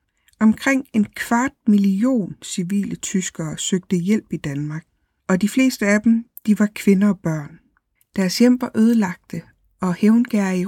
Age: 60-79